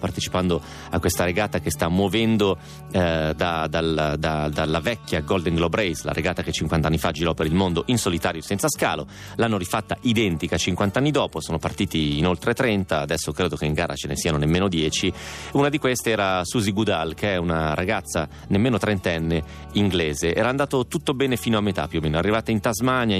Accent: native